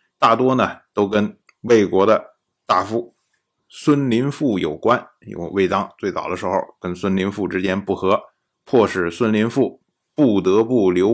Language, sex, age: Chinese, male, 20-39